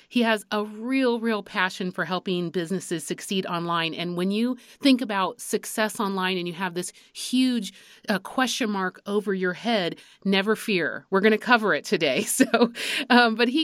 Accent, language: American, English